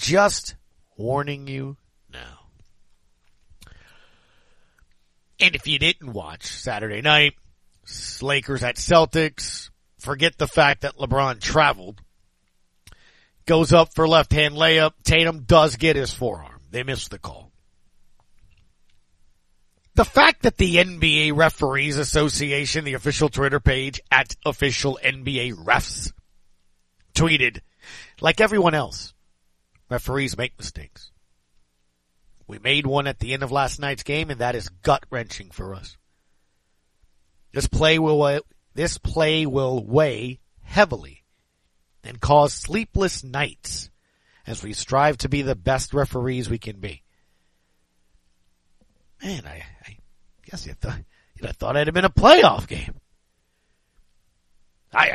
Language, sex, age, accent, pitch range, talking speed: English, male, 40-59, American, 95-155 Hz, 120 wpm